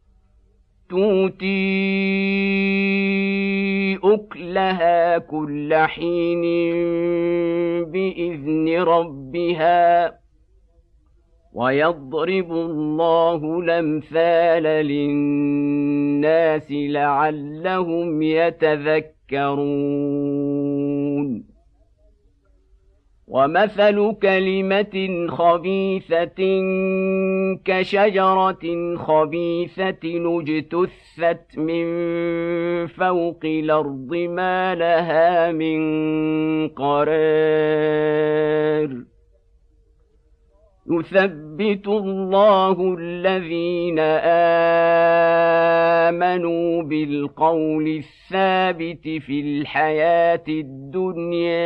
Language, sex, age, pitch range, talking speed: Arabic, male, 50-69, 145-175 Hz, 40 wpm